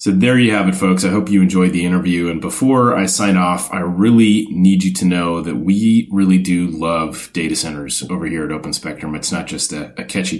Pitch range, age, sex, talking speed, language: 90-105 Hz, 30-49, male, 235 wpm, English